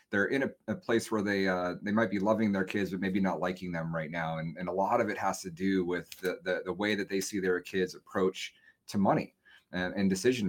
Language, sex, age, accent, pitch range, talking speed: English, male, 30-49, American, 90-100 Hz, 265 wpm